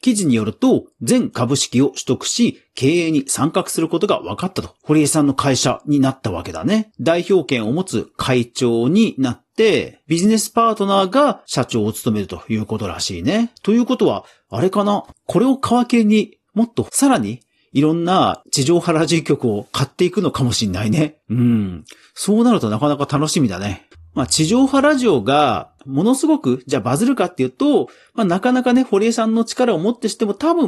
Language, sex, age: Japanese, male, 40-59